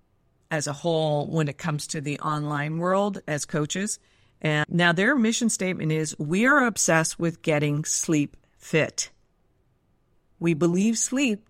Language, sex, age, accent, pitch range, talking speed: English, female, 50-69, American, 155-195 Hz, 145 wpm